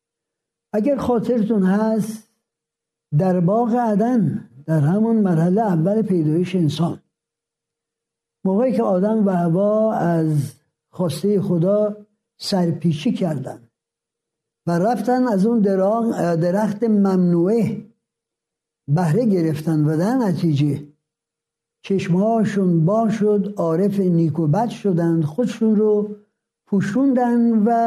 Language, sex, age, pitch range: Persian, male, 60-79, 165-215 Hz